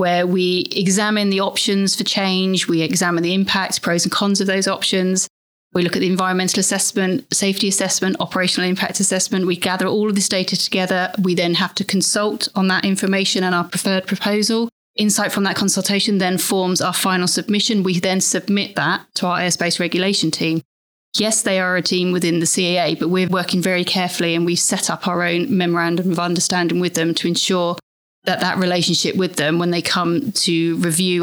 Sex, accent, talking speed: female, British, 195 wpm